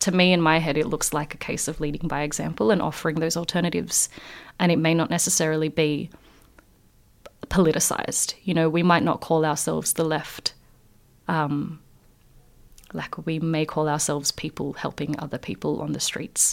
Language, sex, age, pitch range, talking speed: English, female, 30-49, 150-165 Hz, 170 wpm